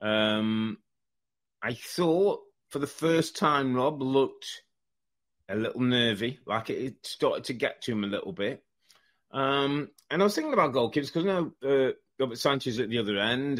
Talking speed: 170 wpm